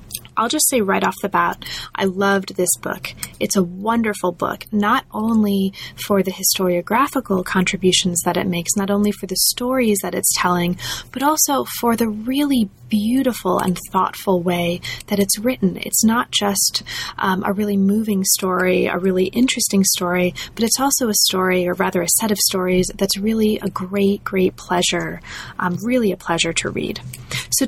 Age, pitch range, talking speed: 20-39, 185-225 Hz, 175 wpm